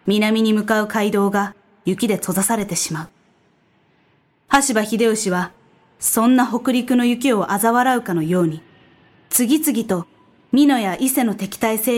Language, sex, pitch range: Japanese, female, 195-245 Hz